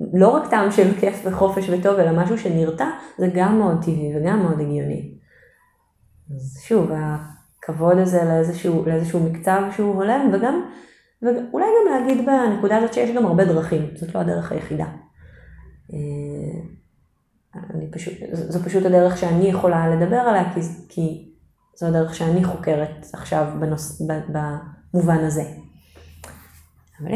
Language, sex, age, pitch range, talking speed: Hebrew, female, 30-49, 160-205 Hz, 135 wpm